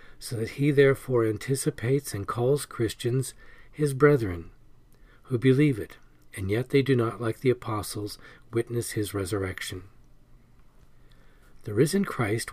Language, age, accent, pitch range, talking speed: English, 40-59, American, 110-135 Hz, 130 wpm